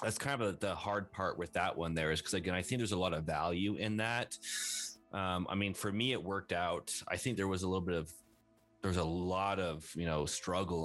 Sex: male